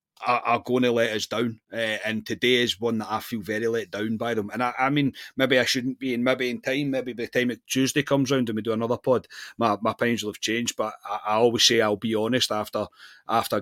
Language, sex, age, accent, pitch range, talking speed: English, male, 30-49, British, 110-135 Hz, 265 wpm